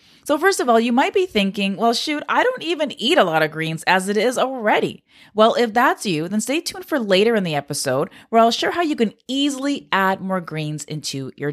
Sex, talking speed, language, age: female, 240 wpm, English, 20-39